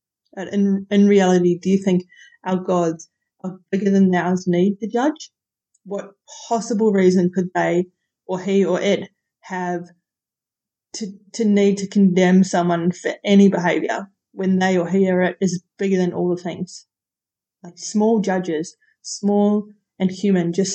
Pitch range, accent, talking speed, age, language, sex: 180-200 Hz, Australian, 155 wpm, 20-39, English, female